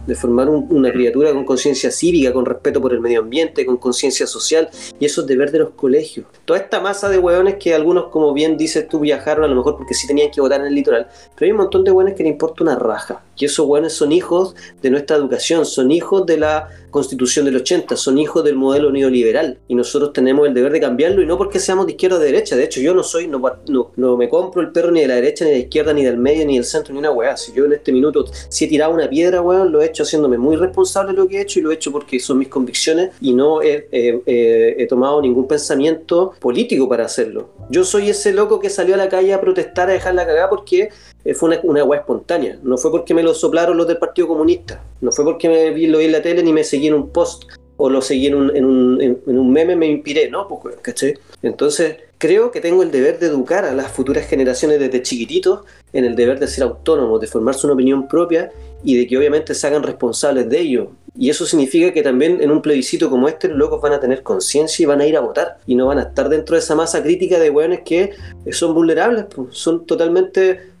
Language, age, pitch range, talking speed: Spanish, 30-49, 140-195 Hz, 255 wpm